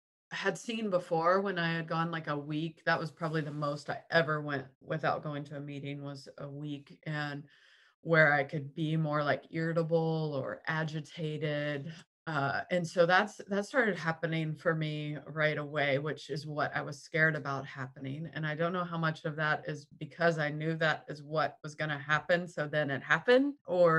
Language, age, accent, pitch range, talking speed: English, 20-39, American, 145-165 Hz, 200 wpm